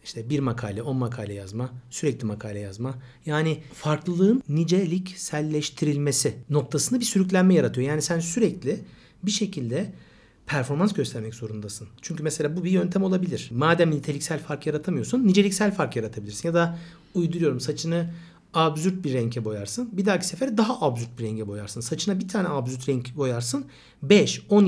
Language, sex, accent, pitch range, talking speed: Turkish, male, native, 135-190 Hz, 145 wpm